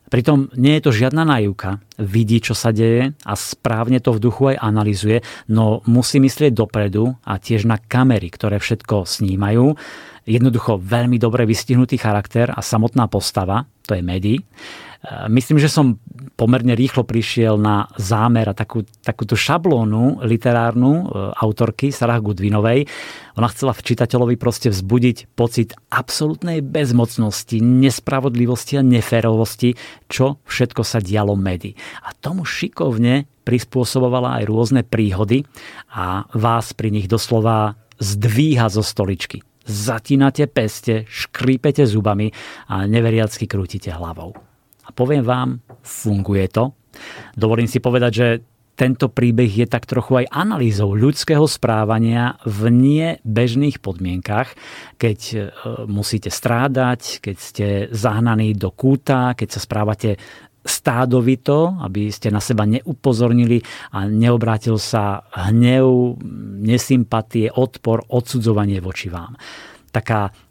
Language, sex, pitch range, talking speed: Slovak, male, 110-130 Hz, 120 wpm